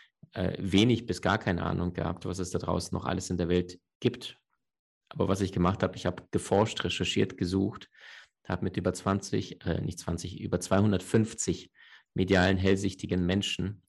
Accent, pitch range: German, 90-100 Hz